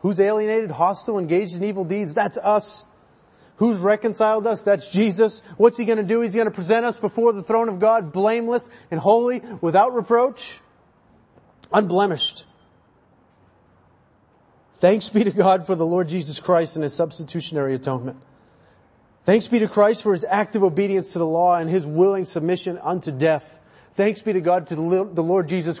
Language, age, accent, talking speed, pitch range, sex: English, 30-49, American, 170 wpm, 180-230 Hz, male